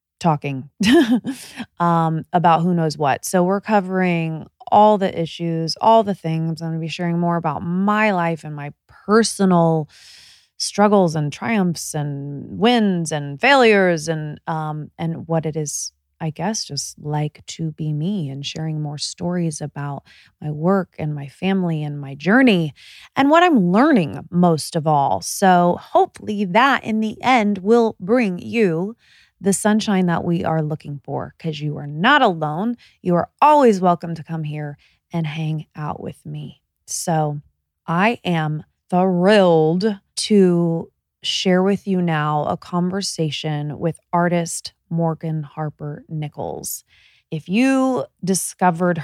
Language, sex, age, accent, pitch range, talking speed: English, female, 20-39, American, 155-200 Hz, 145 wpm